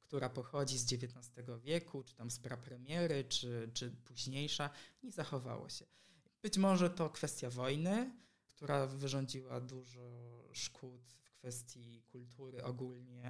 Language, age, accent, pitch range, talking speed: Polish, 20-39, native, 125-150 Hz, 130 wpm